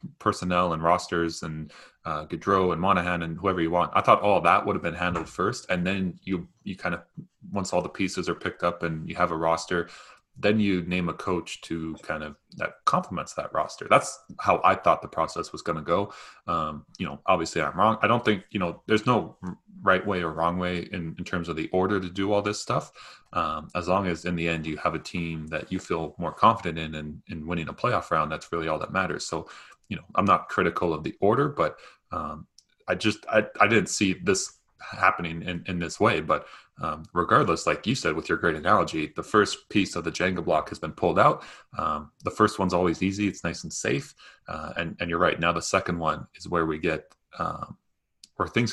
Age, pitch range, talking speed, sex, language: 20-39, 85-100 Hz, 230 wpm, male, English